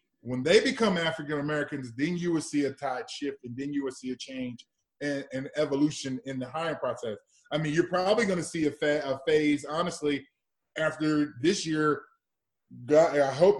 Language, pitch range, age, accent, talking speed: English, 145-175 Hz, 20-39, American, 190 wpm